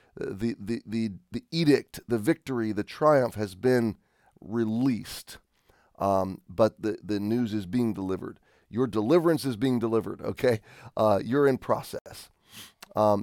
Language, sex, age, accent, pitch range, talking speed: English, male, 30-49, American, 105-125 Hz, 140 wpm